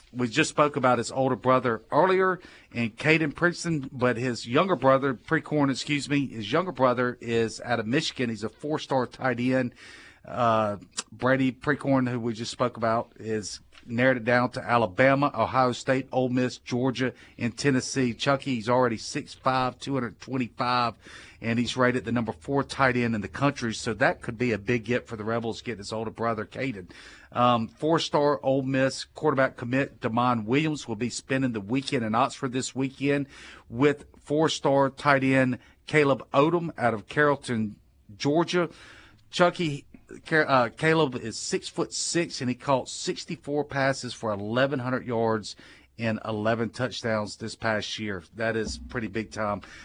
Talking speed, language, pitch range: 160 wpm, English, 115-140 Hz